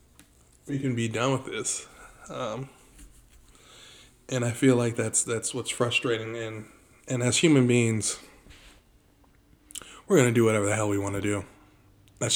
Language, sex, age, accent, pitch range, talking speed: English, male, 20-39, American, 105-125 Hz, 150 wpm